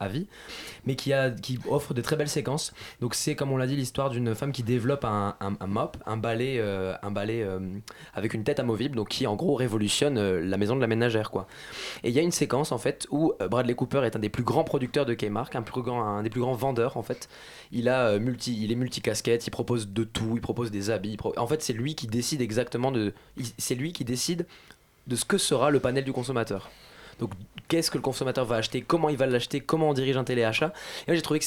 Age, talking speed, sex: 20-39, 255 wpm, male